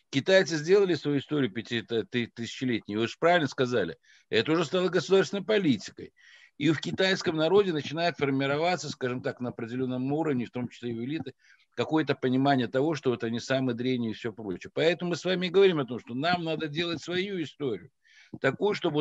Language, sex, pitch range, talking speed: Russian, male, 120-160 Hz, 175 wpm